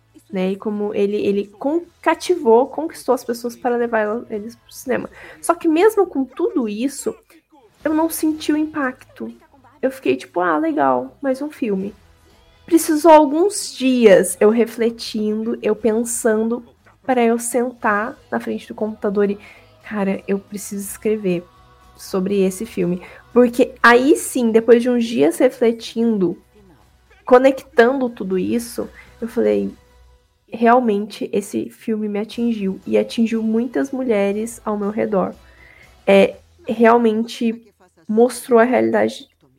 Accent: Brazilian